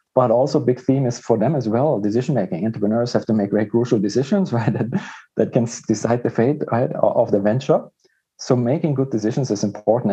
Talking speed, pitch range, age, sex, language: 205 wpm, 105-130 Hz, 40-59, male, English